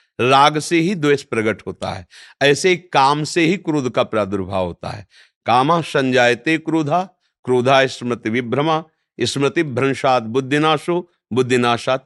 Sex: male